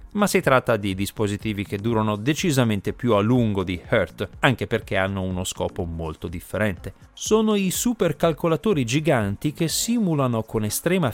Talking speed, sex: 150 wpm, male